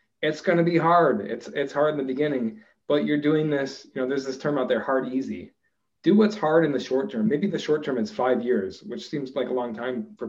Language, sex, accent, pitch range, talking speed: English, male, American, 125-155 Hz, 260 wpm